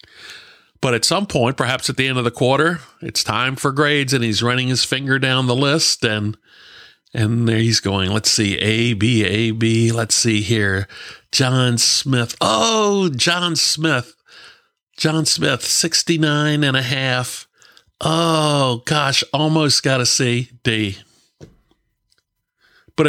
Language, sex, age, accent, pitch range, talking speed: English, male, 50-69, American, 115-150 Hz, 145 wpm